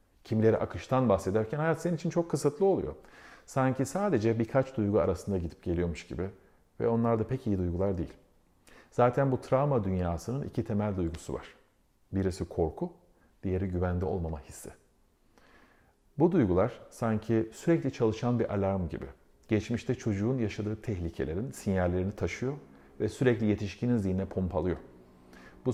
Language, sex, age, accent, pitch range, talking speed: Turkish, male, 50-69, native, 95-115 Hz, 135 wpm